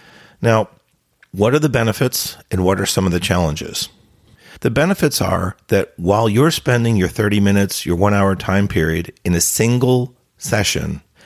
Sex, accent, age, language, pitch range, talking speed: male, American, 50-69, English, 90-115 Hz, 160 wpm